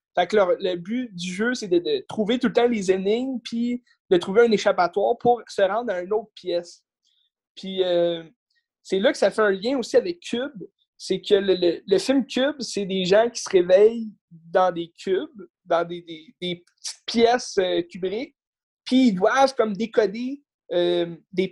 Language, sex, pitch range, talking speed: French, male, 185-245 Hz, 200 wpm